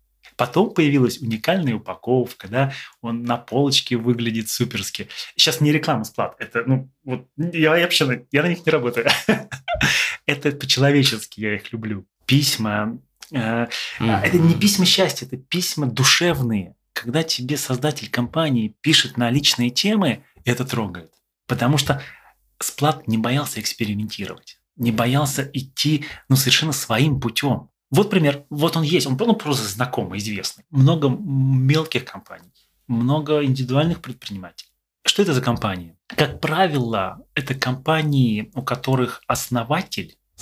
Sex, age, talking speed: male, 20-39, 130 wpm